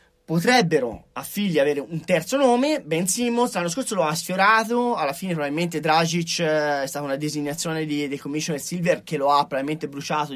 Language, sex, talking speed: Italian, male, 180 wpm